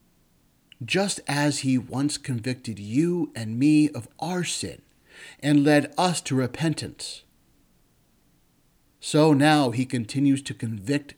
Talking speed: 120 wpm